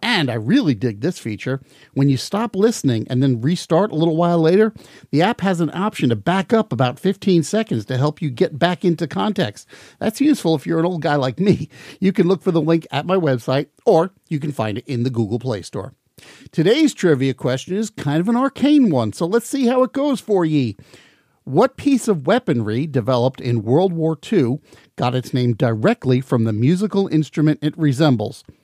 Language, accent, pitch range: English, American, 125-185 Hz